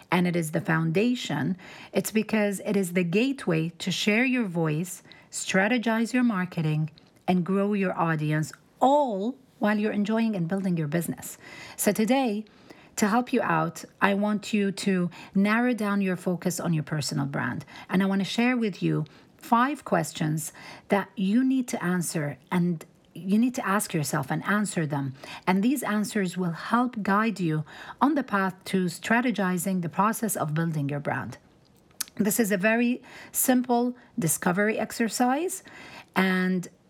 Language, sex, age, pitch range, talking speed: English, female, 40-59, 170-220 Hz, 160 wpm